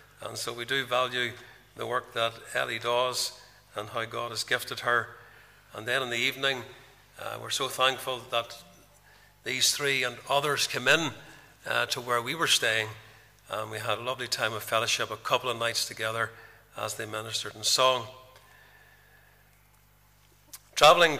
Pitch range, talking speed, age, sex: 115-135 Hz, 160 wpm, 50-69, male